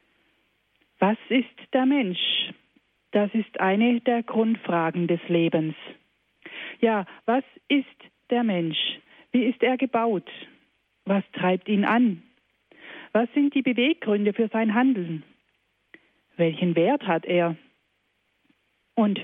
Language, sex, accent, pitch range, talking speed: German, female, German, 190-250 Hz, 110 wpm